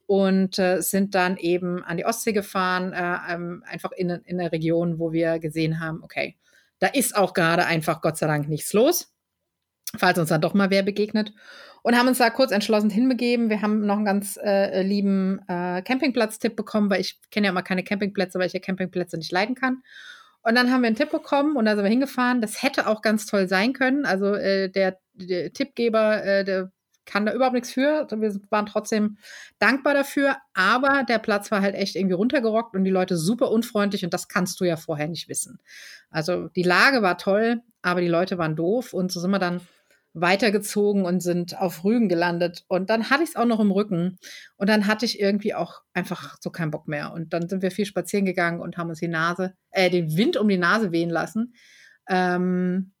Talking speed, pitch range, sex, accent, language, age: 210 wpm, 180-220 Hz, female, German, German, 30-49